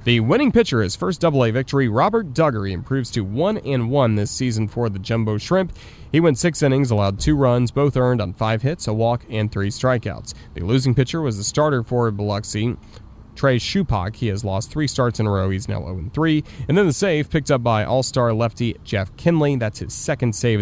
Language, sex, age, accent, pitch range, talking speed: English, male, 30-49, American, 110-145 Hz, 210 wpm